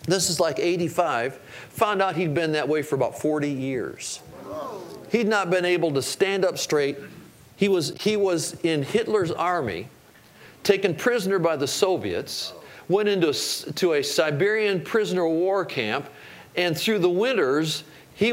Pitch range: 160-210 Hz